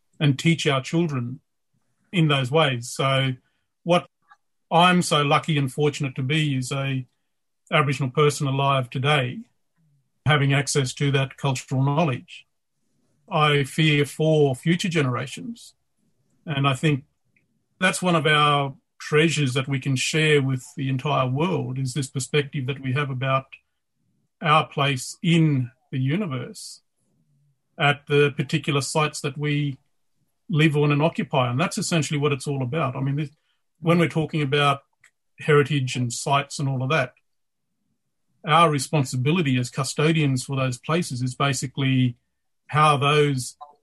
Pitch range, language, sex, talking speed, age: 135-155 Hz, English, male, 140 wpm, 50-69